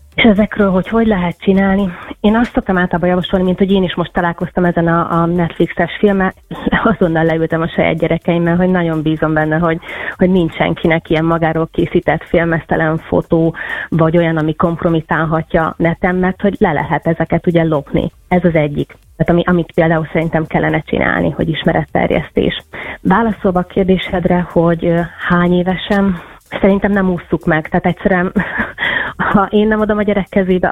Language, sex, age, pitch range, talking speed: Hungarian, female, 30-49, 160-185 Hz, 165 wpm